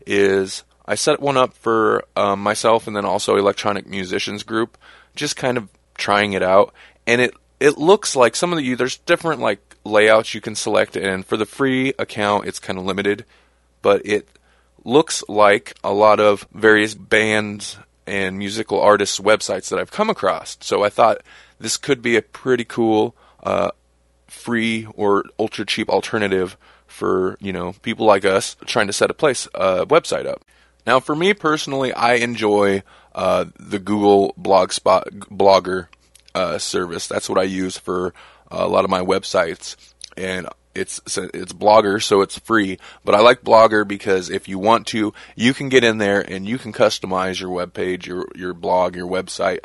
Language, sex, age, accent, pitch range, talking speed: English, male, 20-39, American, 95-115 Hz, 175 wpm